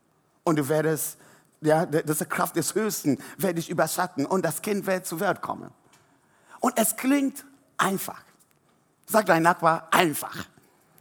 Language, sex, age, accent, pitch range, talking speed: German, male, 60-79, German, 165-250 Hz, 140 wpm